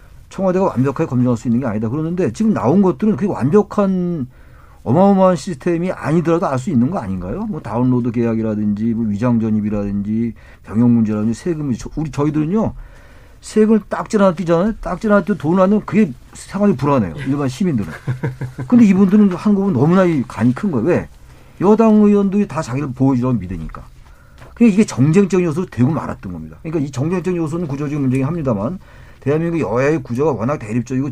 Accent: native